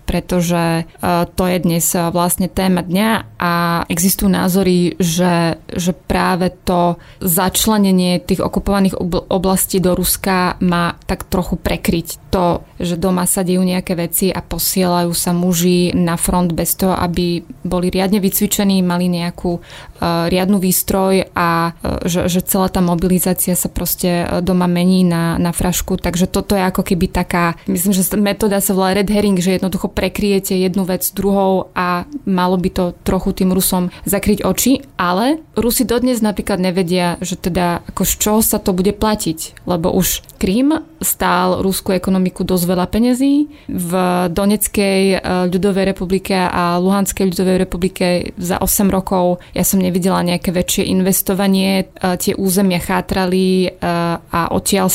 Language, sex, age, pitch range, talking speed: Slovak, female, 20-39, 180-195 Hz, 145 wpm